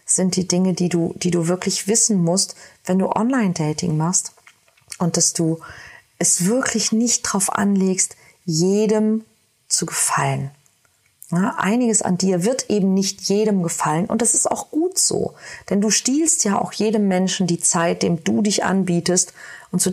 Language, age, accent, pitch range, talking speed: German, 40-59, German, 175-215 Hz, 165 wpm